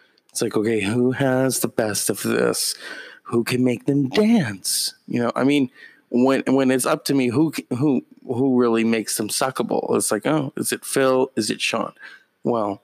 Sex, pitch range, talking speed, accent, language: male, 115-145 Hz, 190 wpm, American, English